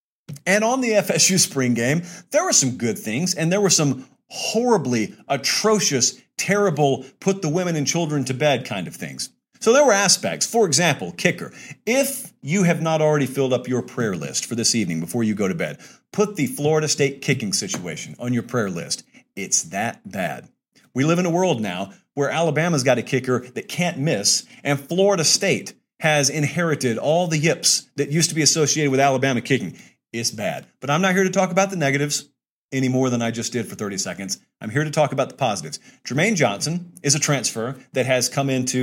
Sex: male